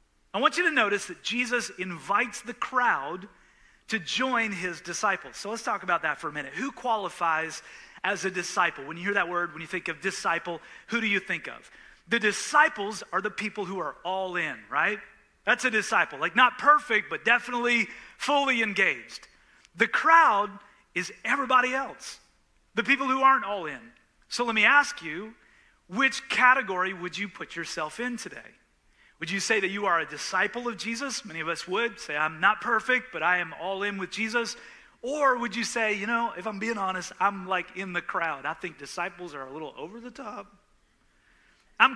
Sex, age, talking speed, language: male, 30-49, 195 wpm, English